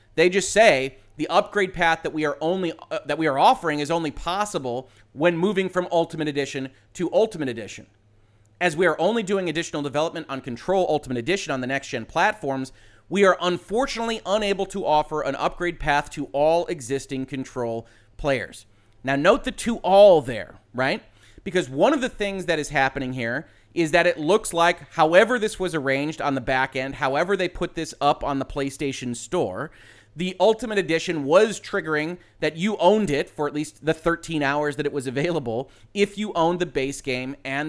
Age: 30-49